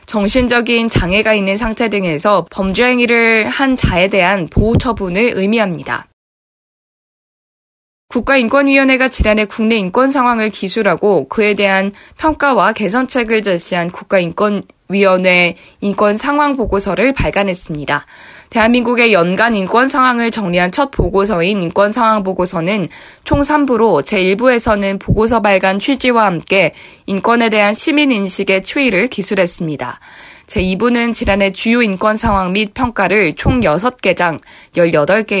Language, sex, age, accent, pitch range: Korean, female, 20-39, native, 185-235 Hz